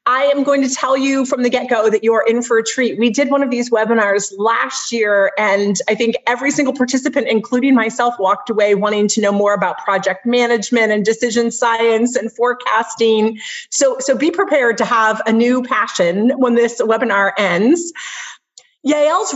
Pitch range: 210-270 Hz